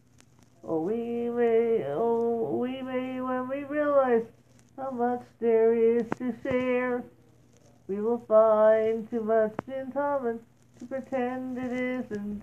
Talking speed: 125 wpm